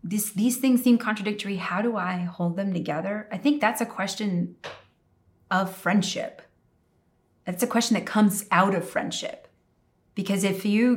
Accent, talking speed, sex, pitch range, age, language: American, 160 wpm, female, 180-225 Hz, 30-49, English